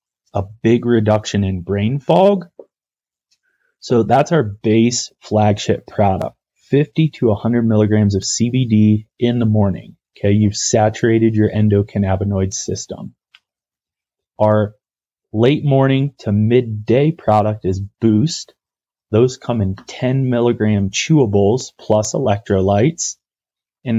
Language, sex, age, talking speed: English, male, 20-39, 110 wpm